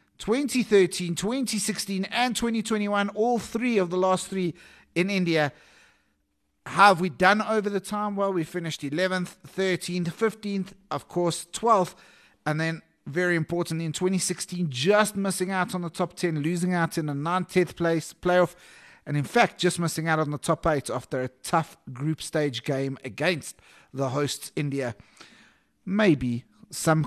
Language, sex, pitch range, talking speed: English, male, 145-190 Hz, 155 wpm